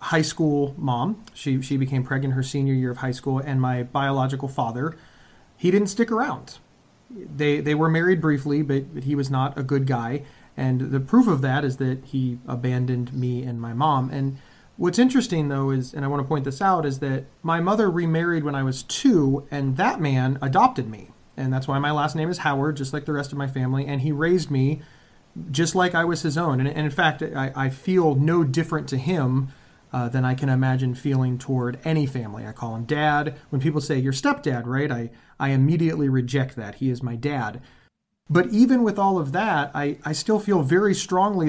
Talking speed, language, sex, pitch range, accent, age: 215 wpm, English, male, 130-165 Hz, American, 30-49